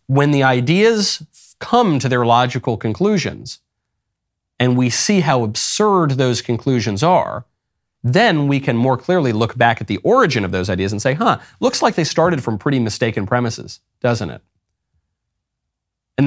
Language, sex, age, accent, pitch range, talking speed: English, male, 40-59, American, 105-145 Hz, 160 wpm